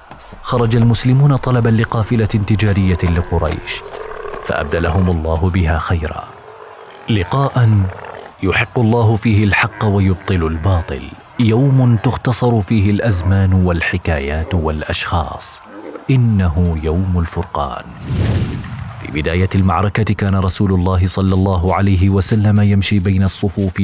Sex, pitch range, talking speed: male, 90-110 Hz, 100 wpm